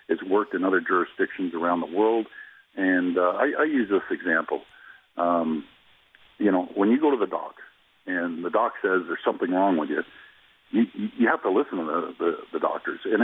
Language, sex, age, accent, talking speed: English, male, 50-69, American, 195 wpm